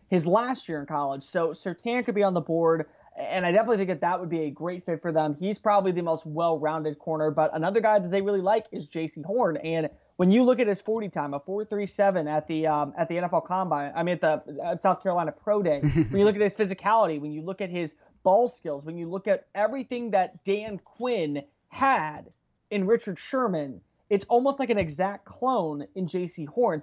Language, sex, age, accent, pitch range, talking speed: English, male, 30-49, American, 165-225 Hz, 220 wpm